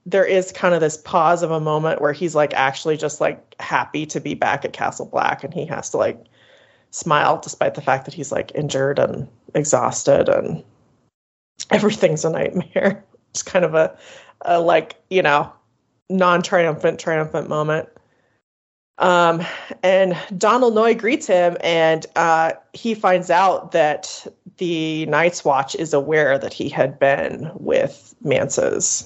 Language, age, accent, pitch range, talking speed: English, 30-49, American, 150-185 Hz, 155 wpm